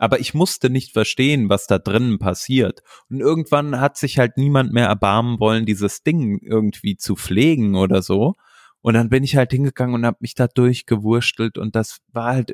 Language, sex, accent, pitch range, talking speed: German, male, German, 100-130 Hz, 190 wpm